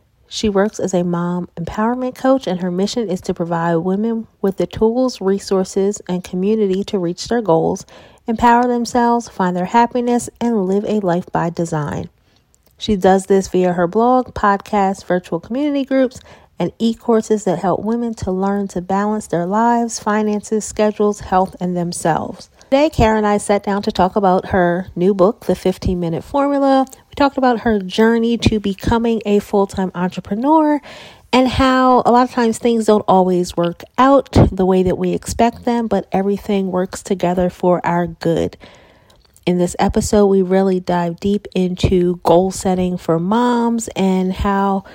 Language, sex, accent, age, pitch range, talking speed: English, female, American, 30-49, 180-230 Hz, 165 wpm